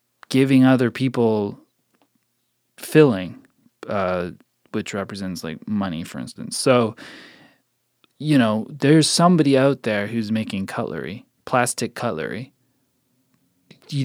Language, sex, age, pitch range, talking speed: English, male, 20-39, 115-145 Hz, 100 wpm